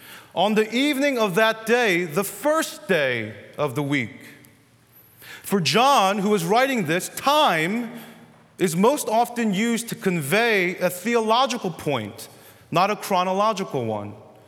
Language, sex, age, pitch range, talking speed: English, male, 30-49, 165-235 Hz, 135 wpm